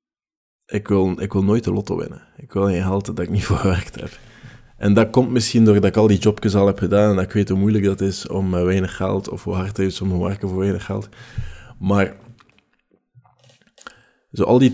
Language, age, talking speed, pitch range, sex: Dutch, 20-39, 230 wpm, 95-110 Hz, male